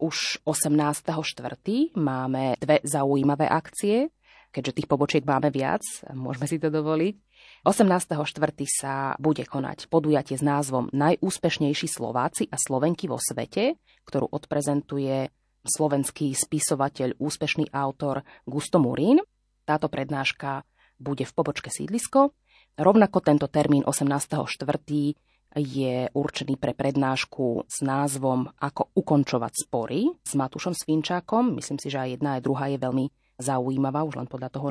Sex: female